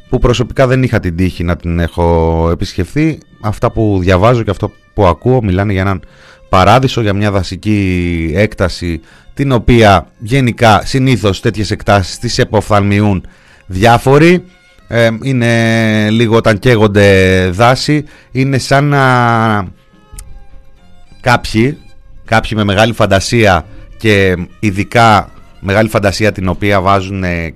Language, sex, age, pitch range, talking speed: Greek, male, 30-49, 90-115 Hz, 120 wpm